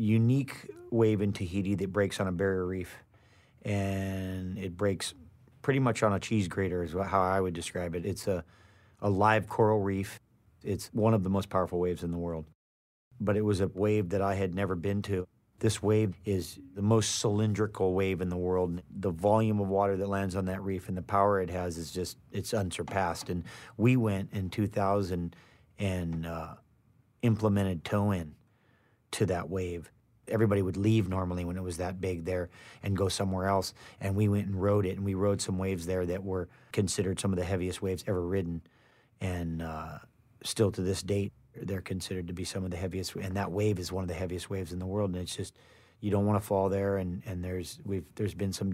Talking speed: 210 wpm